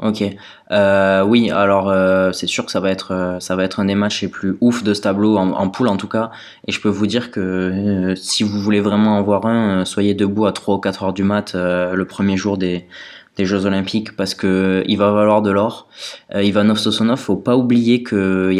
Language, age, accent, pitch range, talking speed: French, 20-39, French, 95-110 Hz, 250 wpm